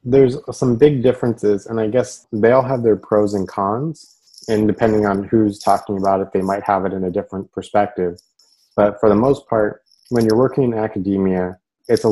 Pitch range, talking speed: 95-110 Hz, 205 wpm